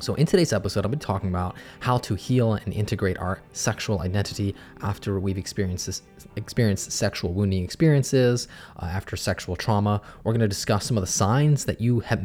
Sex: male